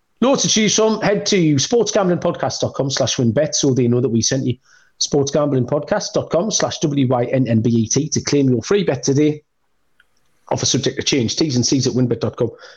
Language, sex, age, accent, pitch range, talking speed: English, male, 40-59, British, 130-175 Hz, 165 wpm